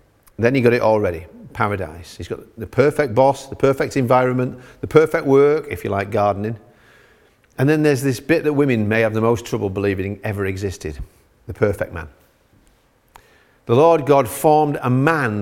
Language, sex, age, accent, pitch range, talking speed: English, male, 50-69, British, 110-150 Hz, 175 wpm